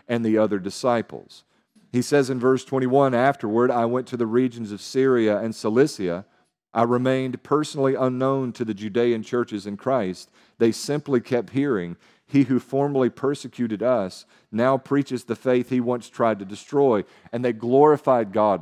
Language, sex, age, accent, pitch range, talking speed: English, male, 50-69, American, 105-130 Hz, 165 wpm